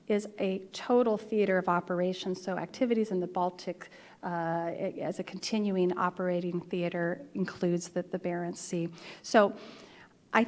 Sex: female